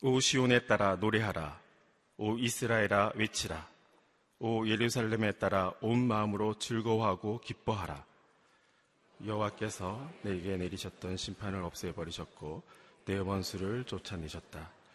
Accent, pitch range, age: native, 95-115 Hz, 40-59